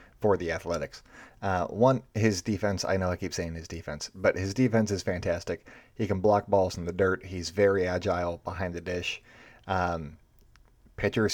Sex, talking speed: male, 180 wpm